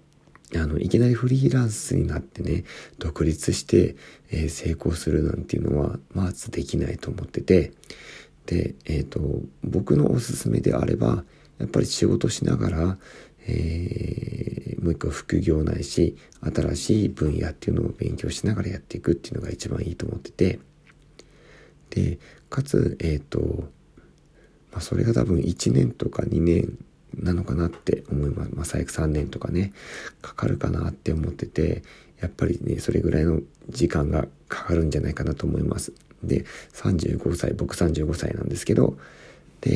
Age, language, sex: 50-69, Japanese, male